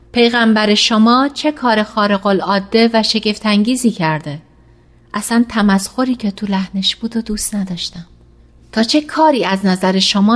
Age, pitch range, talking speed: 30-49, 200-250 Hz, 140 wpm